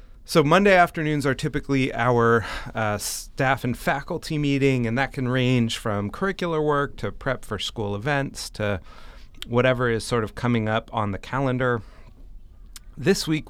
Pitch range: 105-130 Hz